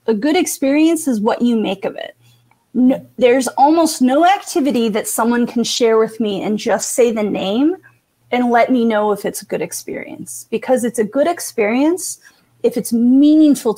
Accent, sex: American, female